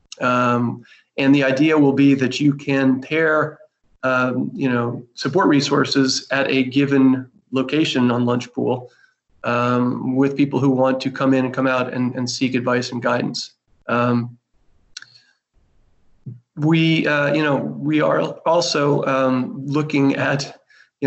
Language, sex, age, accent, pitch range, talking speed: English, male, 30-49, American, 125-145 Hz, 145 wpm